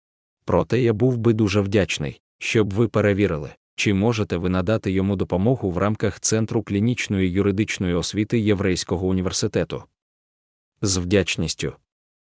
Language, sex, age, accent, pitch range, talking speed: Ukrainian, male, 20-39, native, 90-105 Hz, 125 wpm